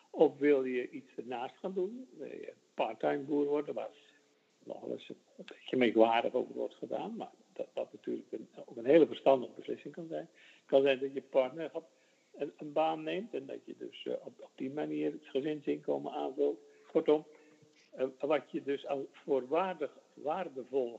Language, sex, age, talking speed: Dutch, male, 60-79, 175 wpm